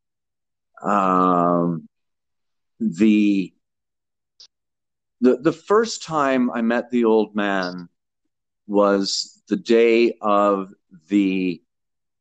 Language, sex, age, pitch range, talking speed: English, male, 40-59, 90-110 Hz, 80 wpm